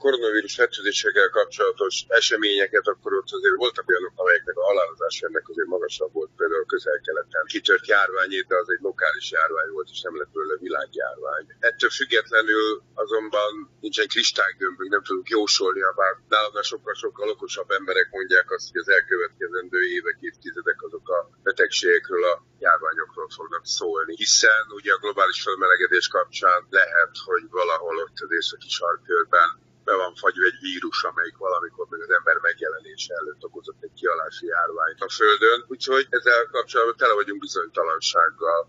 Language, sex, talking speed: Hungarian, male, 155 wpm